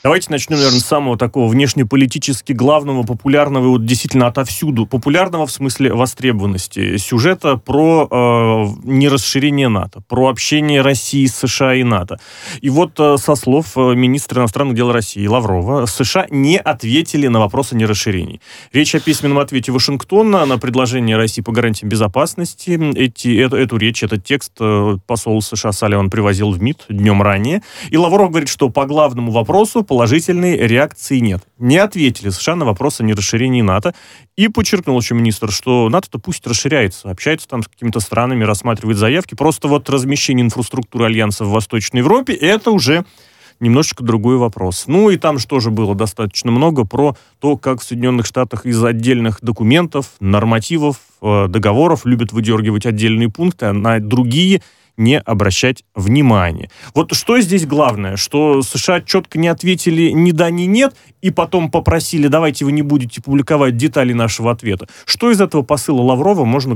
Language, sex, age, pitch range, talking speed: Russian, male, 30-49, 115-150 Hz, 160 wpm